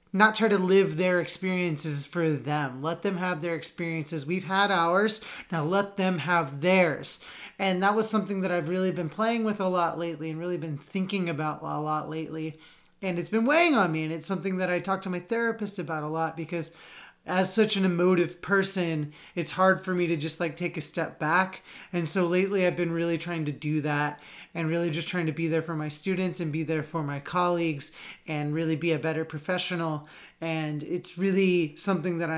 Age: 30-49